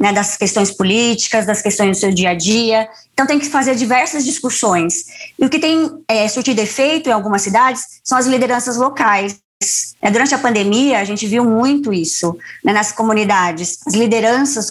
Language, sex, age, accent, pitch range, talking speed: Portuguese, male, 20-39, Brazilian, 205-255 Hz, 185 wpm